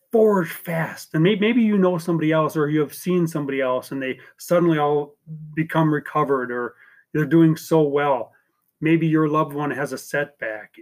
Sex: male